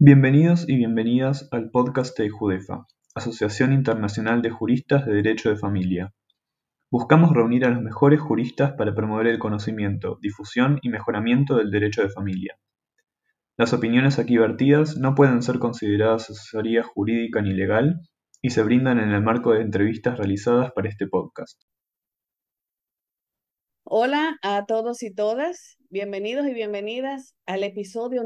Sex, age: male, 20-39